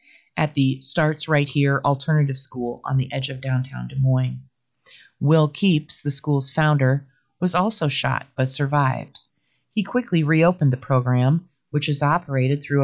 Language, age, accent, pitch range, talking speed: English, 30-49, American, 130-155 Hz, 155 wpm